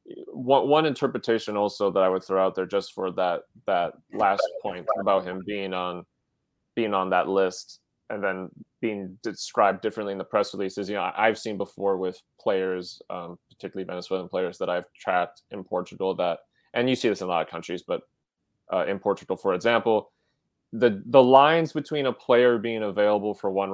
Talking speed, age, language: 190 wpm, 20-39, English